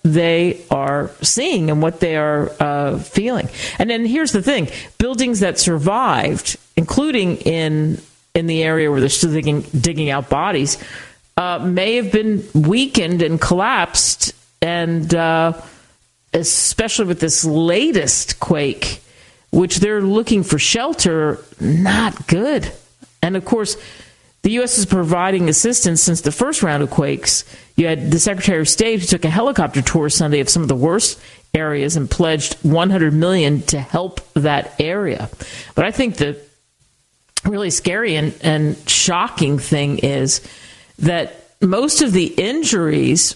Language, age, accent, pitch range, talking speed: English, 50-69, American, 150-195 Hz, 145 wpm